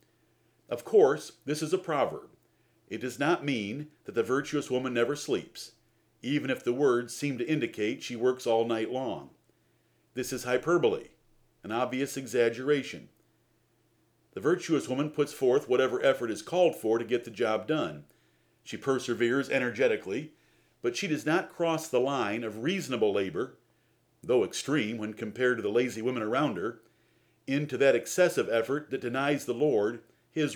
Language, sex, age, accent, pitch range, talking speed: English, male, 50-69, American, 115-150 Hz, 160 wpm